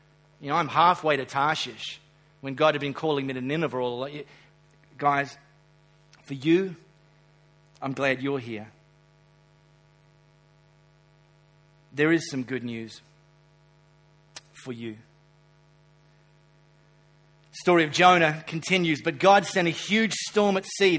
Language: English